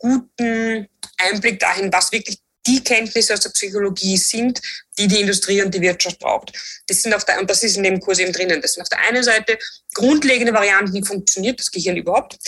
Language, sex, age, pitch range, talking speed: German, female, 20-39, 185-225 Hz, 205 wpm